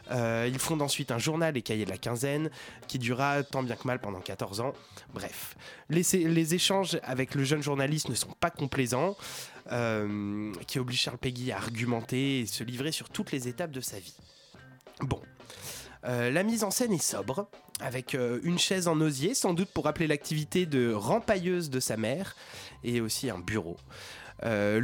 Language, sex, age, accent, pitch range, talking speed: French, male, 20-39, French, 120-175 Hz, 190 wpm